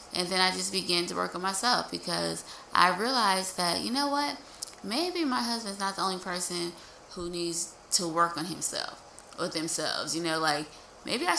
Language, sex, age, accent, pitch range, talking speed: English, female, 20-39, American, 160-190 Hz, 190 wpm